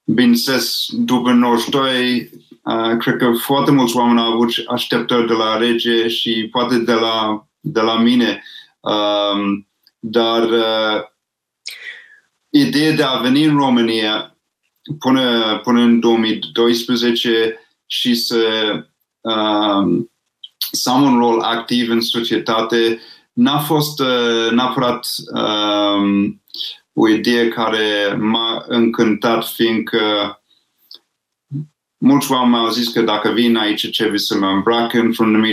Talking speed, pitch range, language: 120 wpm, 110-125 Hz, Romanian